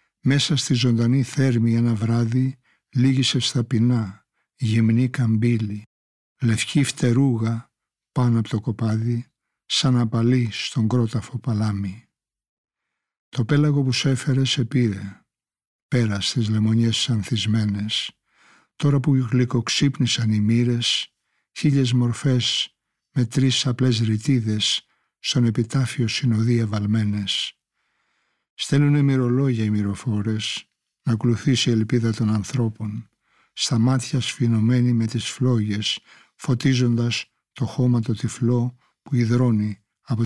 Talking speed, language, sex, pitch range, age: 105 wpm, Greek, male, 110-130 Hz, 60-79